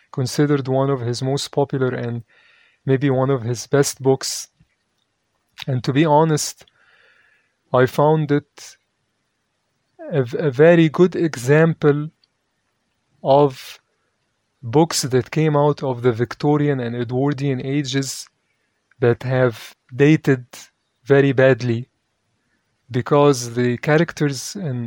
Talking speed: 110 wpm